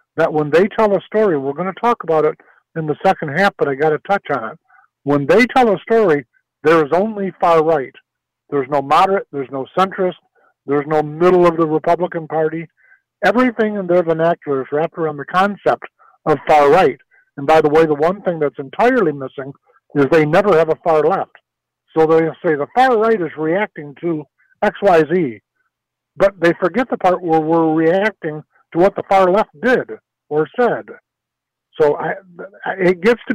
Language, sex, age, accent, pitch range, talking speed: English, male, 50-69, American, 150-190 Hz, 195 wpm